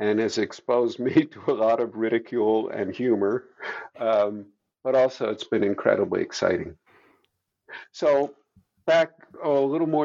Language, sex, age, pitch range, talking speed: English, male, 50-69, 105-155 Hz, 135 wpm